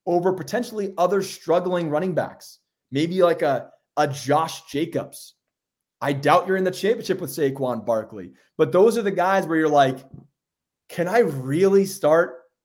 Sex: male